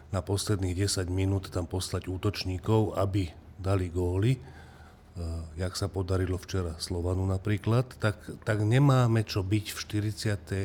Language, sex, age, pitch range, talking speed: Slovak, male, 40-59, 95-105 Hz, 130 wpm